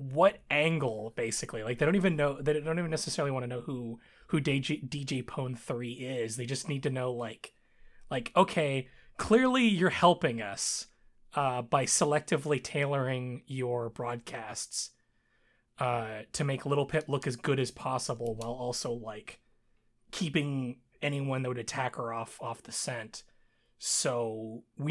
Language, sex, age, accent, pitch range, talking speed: English, male, 20-39, American, 115-145 Hz, 155 wpm